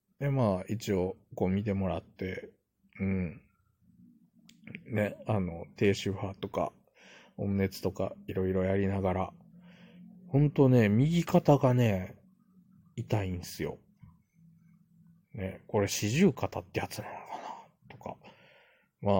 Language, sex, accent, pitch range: Japanese, male, native, 100-130 Hz